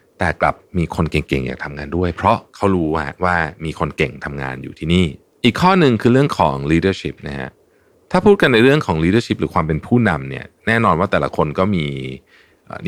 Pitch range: 80-115 Hz